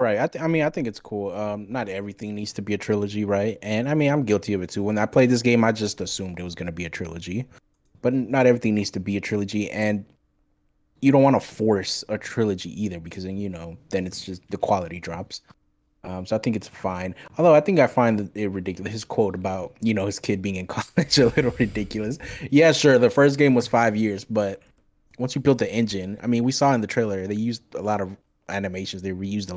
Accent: American